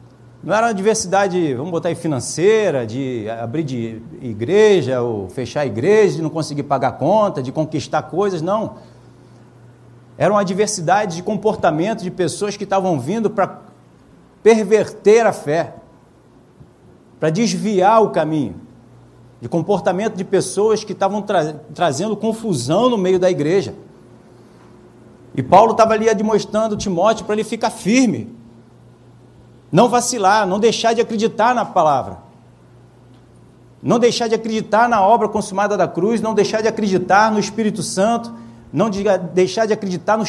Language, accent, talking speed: Portuguese, Brazilian, 140 wpm